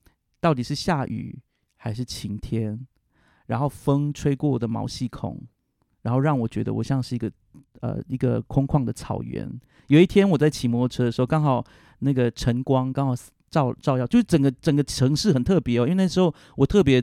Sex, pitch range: male, 120-150 Hz